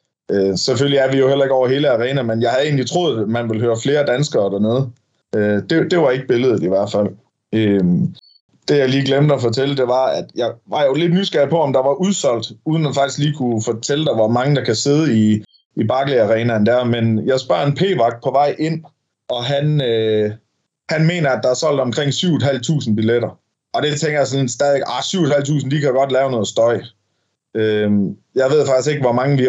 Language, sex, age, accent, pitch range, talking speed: Danish, male, 20-39, native, 115-145 Hz, 220 wpm